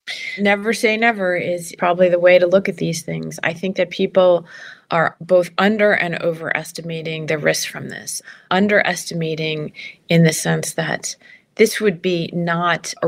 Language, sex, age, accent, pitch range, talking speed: English, female, 30-49, American, 160-180 Hz, 160 wpm